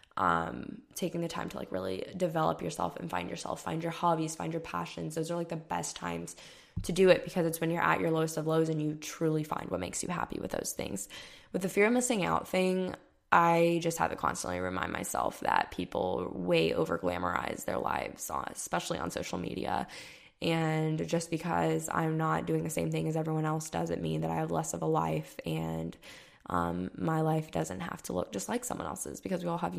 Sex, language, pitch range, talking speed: female, English, 110-170 Hz, 220 wpm